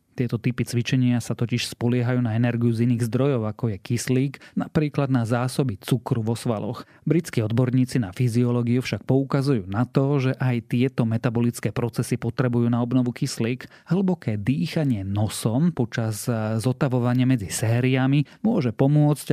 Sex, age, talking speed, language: male, 30-49, 145 wpm, Slovak